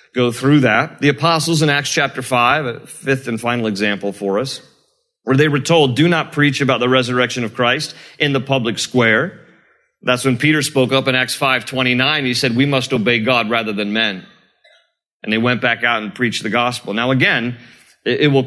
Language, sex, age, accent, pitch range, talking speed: English, male, 40-59, American, 130-160 Hz, 210 wpm